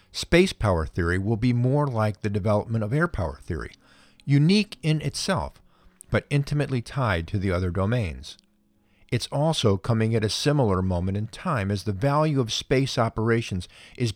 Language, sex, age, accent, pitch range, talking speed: English, male, 50-69, American, 90-125 Hz, 165 wpm